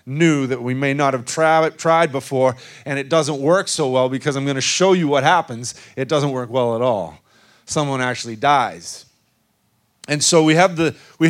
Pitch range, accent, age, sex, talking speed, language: 130-170 Hz, American, 40-59, male, 185 wpm, English